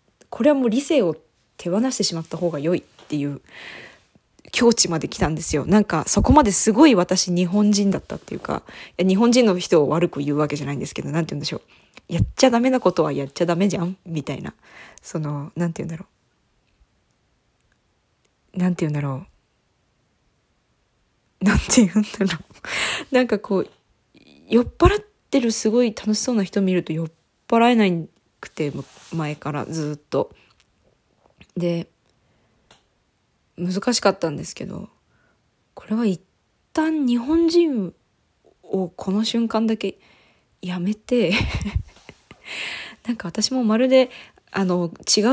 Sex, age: female, 20-39